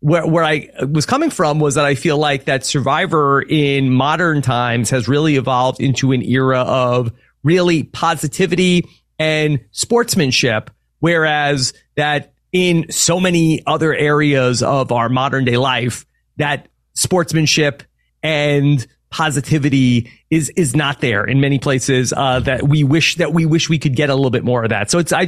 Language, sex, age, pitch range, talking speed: English, male, 30-49, 130-160 Hz, 165 wpm